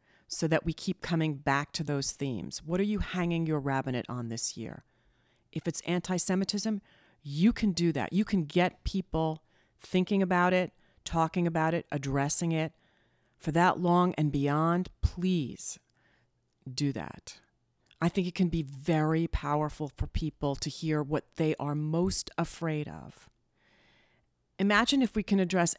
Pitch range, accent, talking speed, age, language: 150-180 Hz, American, 155 wpm, 40-59, English